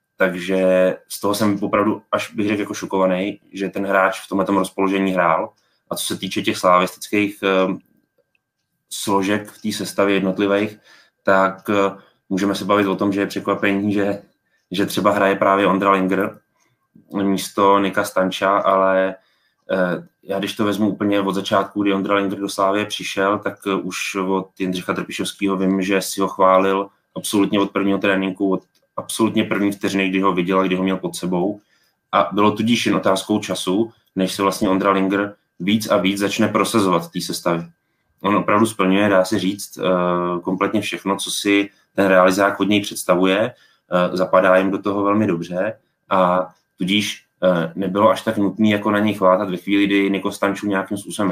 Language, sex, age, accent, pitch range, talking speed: Czech, male, 20-39, native, 95-100 Hz, 165 wpm